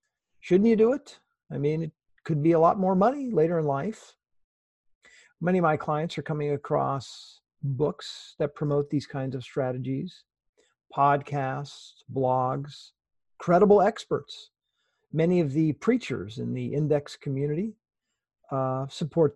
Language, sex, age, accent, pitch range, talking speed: English, male, 50-69, American, 130-160 Hz, 135 wpm